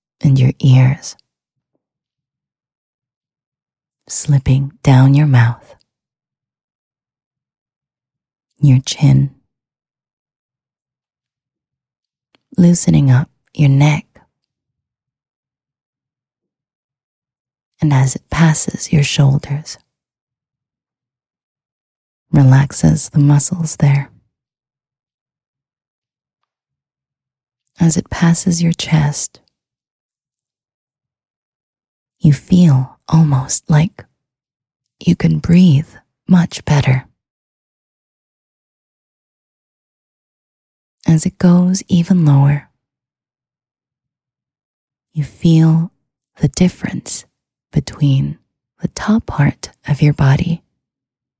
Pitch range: 130-160 Hz